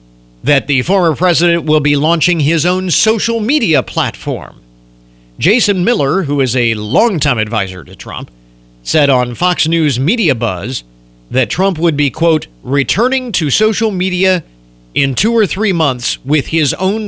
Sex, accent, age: male, American, 40-59